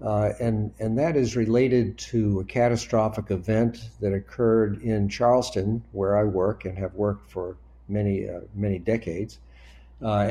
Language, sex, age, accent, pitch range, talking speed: English, male, 60-79, American, 100-120 Hz, 150 wpm